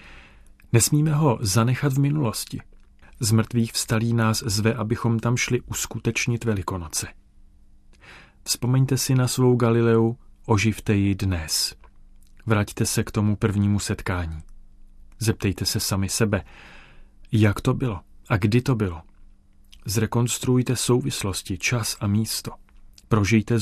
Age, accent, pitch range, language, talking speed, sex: 40-59, native, 100-115 Hz, Czech, 115 wpm, male